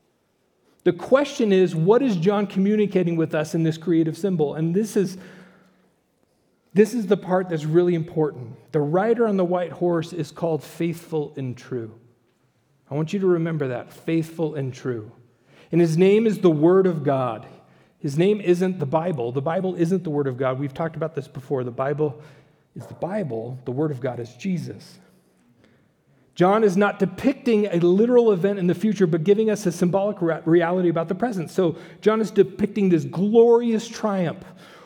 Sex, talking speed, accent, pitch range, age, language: male, 180 wpm, American, 155-200 Hz, 40-59, English